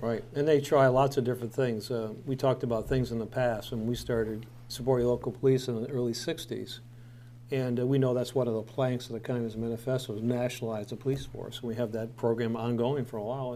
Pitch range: 120-135 Hz